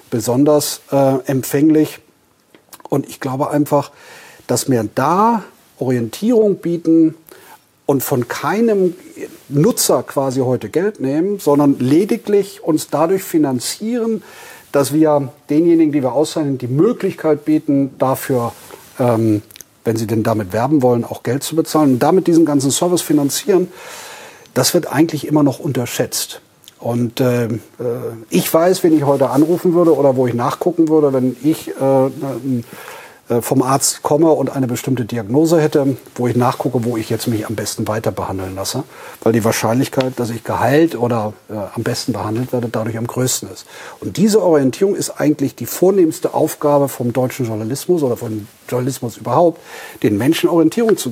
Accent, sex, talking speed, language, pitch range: German, male, 155 wpm, German, 120-160 Hz